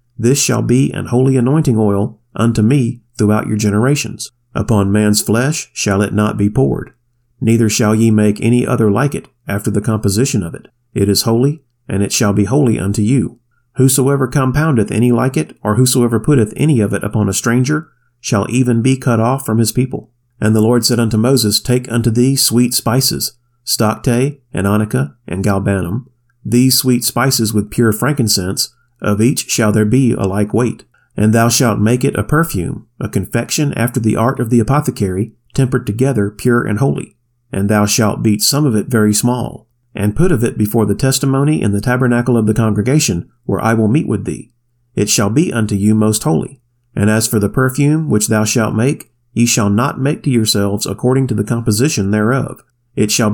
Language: English